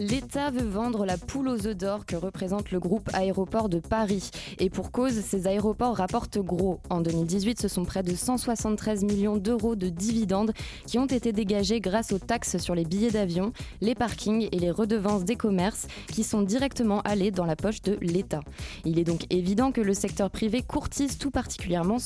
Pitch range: 185-230 Hz